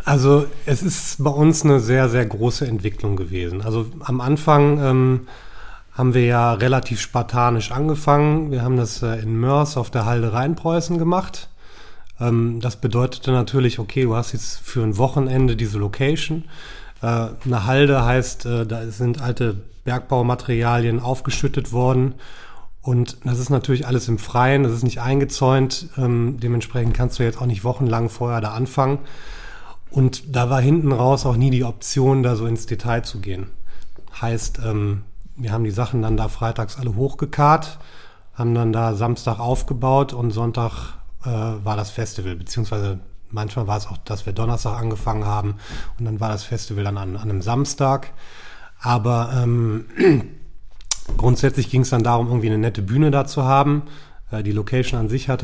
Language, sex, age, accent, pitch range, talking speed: German, male, 30-49, German, 110-130 Hz, 165 wpm